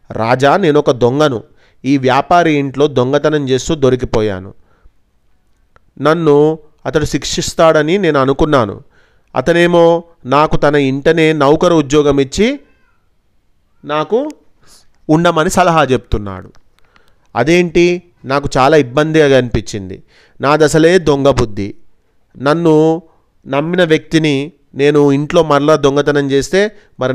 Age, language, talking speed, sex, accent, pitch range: 30-49, Telugu, 95 wpm, male, native, 125-155 Hz